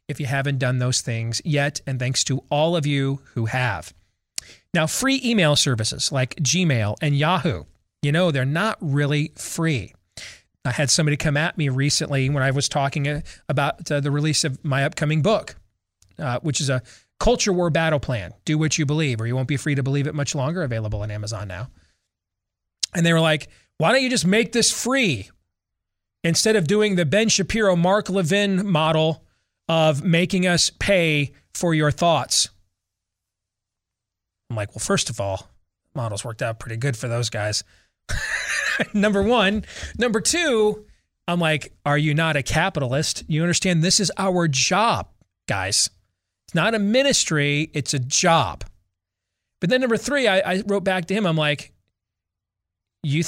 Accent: American